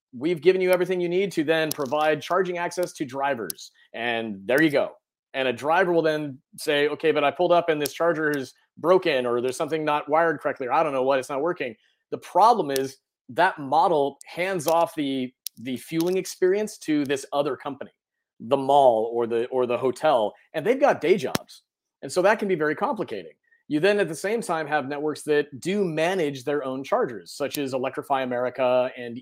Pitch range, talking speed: 135-175 Hz, 205 wpm